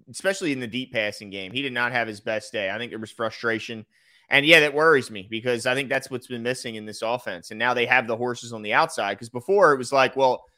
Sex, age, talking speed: male, 30-49, 270 wpm